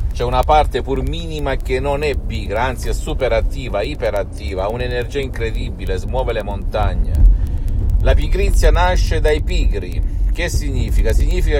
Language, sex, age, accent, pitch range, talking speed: Italian, male, 50-69, native, 90-130 Hz, 140 wpm